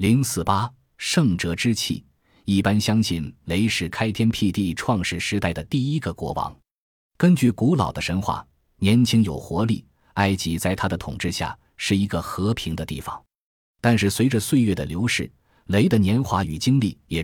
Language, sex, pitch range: Chinese, male, 85-110 Hz